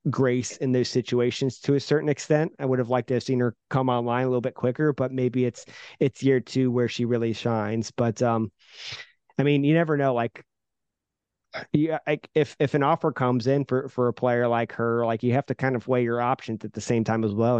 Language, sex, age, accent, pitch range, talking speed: English, male, 30-49, American, 115-135 Hz, 235 wpm